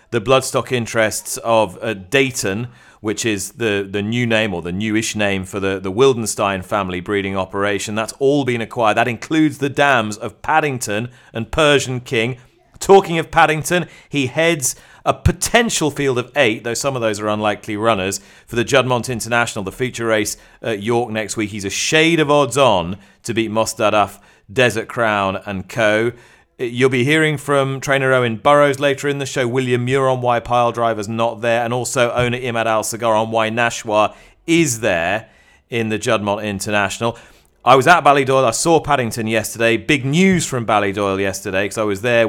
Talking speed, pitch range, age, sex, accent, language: 180 wpm, 105-135 Hz, 30-49, male, British, English